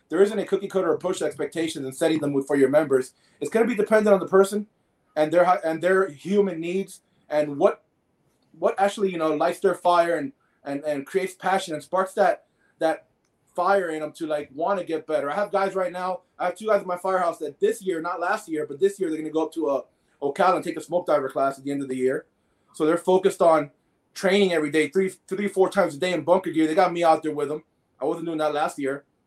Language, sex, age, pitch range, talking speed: English, male, 20-39, 160-195 Hz, 255 wpm